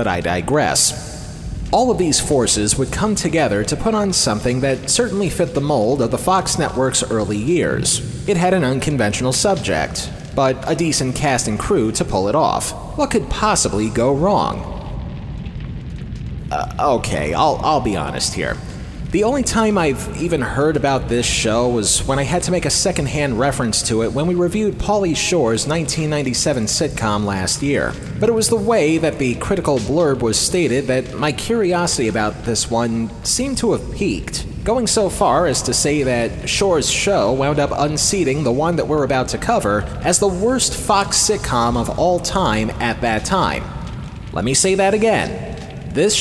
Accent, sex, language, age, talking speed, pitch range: American, male, English, 30-49, 180 wpm, 120-185 Hz